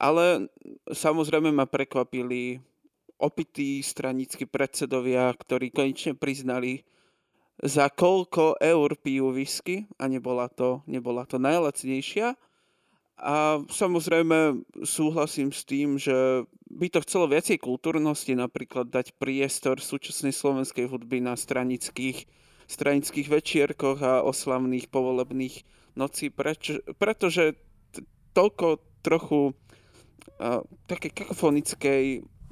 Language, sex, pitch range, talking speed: Slovak, male, 125-150 Hz, 95 wpm